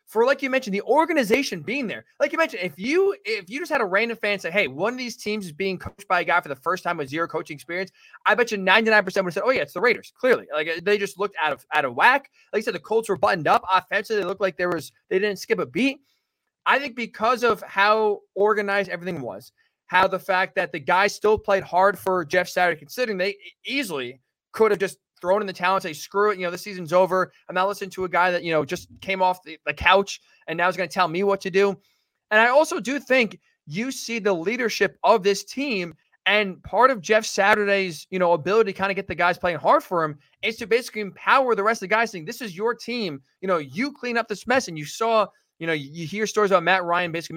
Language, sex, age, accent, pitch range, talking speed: English, male, 20-39, American, 175-220 Hz, 260 wpm